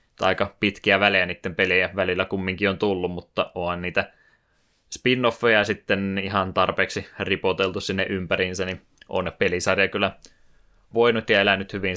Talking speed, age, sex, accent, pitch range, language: 140 wpm, 20-39, male, native, 95-100 Hz, Finnish